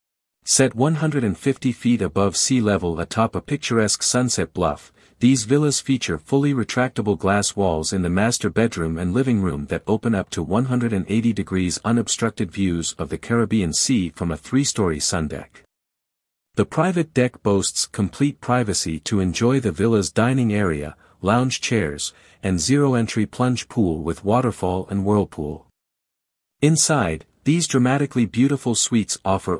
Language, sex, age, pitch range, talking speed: English, male, 50-69, 90-125 Hz, 140 wpm